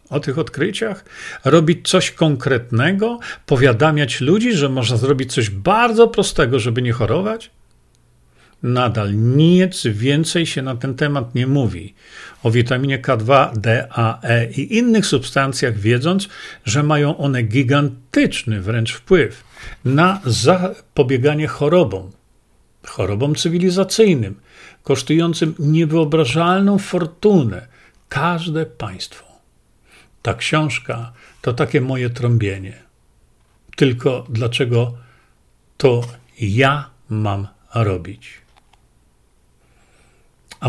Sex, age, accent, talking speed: male, 50-69, native, 95 wpm